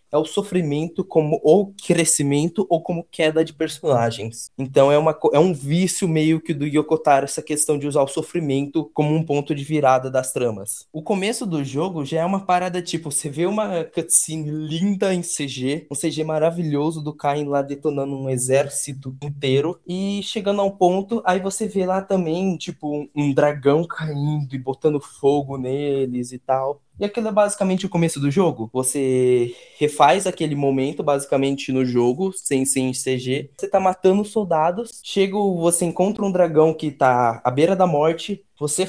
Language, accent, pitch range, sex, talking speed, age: Portuguese, Brazilian, 140-180 Hz, male, 175 wpm, 20-39